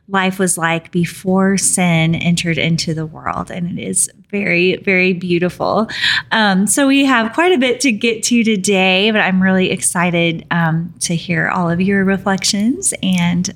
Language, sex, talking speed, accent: English, female, 170 wpm, American